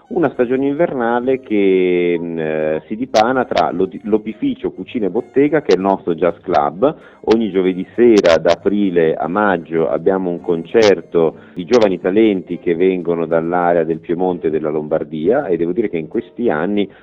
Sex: male